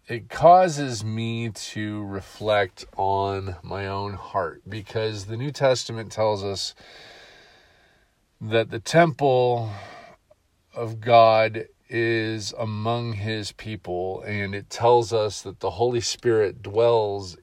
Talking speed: 115 wpm